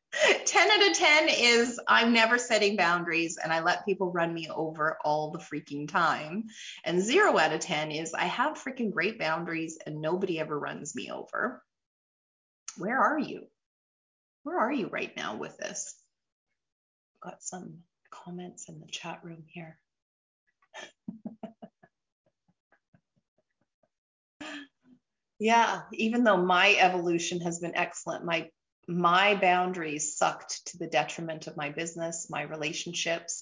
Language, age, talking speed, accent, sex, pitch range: English, 30-49, 135 wpm, American, female, 160-230 Hz